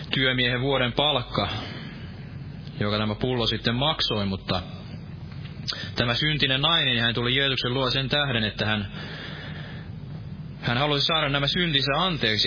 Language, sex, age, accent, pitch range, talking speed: Finnish, male, 20-39, native, 115-145 Hz, 125 wpm